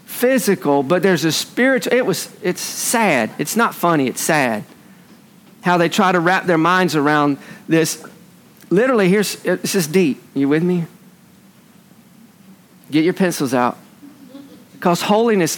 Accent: American